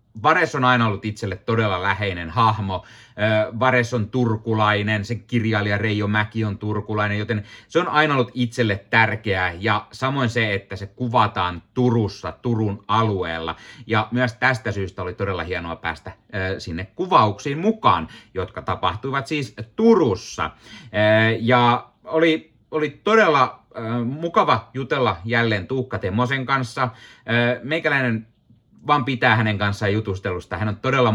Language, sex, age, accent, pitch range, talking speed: Finnish, male, 30-49, native, 105-130 Hz, 130 wpm